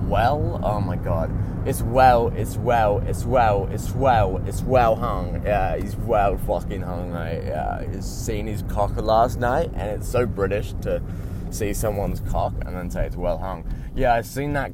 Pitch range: 90-120 Hz